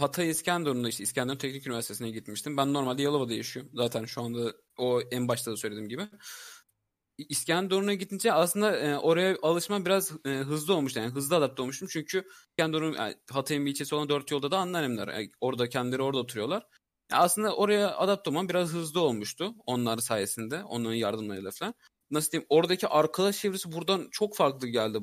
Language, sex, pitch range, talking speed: Turkish, male, 120-180 Hz, 175 wpm